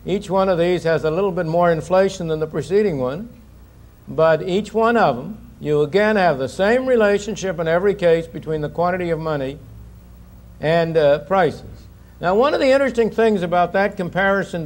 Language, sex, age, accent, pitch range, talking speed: English, male, 60-79, American, 155-200 Hz, 185 wpm